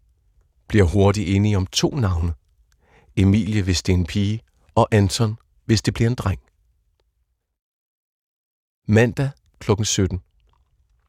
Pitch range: 85-105 Hz